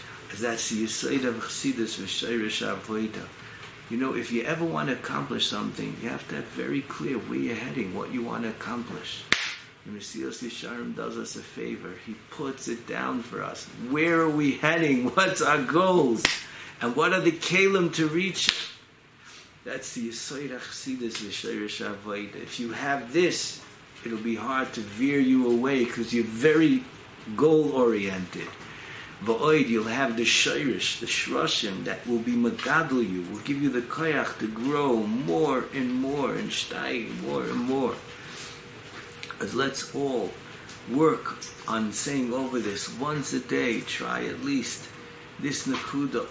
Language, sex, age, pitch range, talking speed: English, male, 50-69, 115-140 Hz, 145 wpm